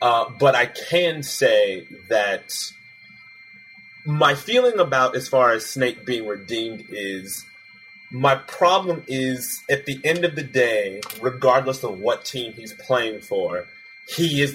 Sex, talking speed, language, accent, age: male, 140 wpm, English, American, 30-49